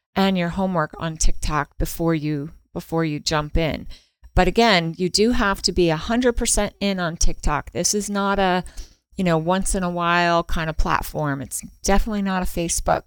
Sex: female